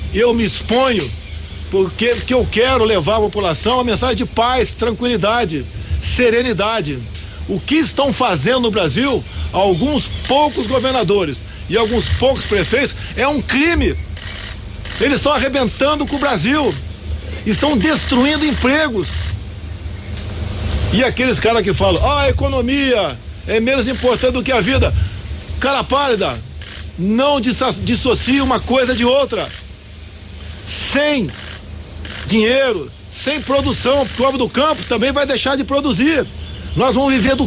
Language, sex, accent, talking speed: Portuguese, male, Brazilian, 130 wpm